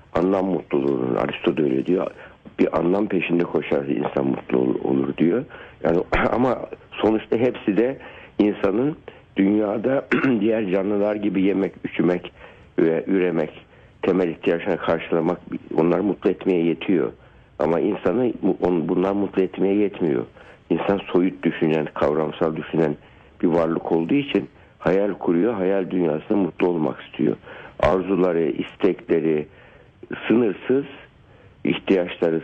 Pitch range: 85-105 Hz